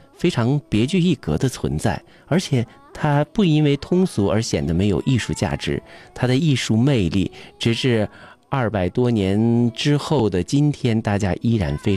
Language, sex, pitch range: Chinese, male, 95-140 Hz